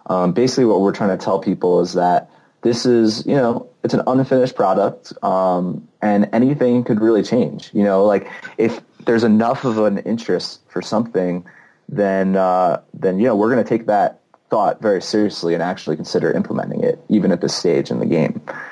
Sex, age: male, 30-49